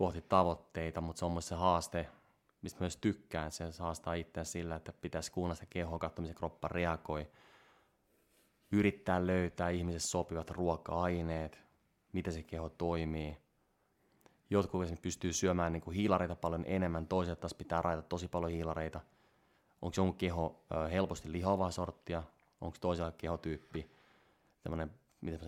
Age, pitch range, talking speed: 20-39, 80-90 Hz, 130 wpm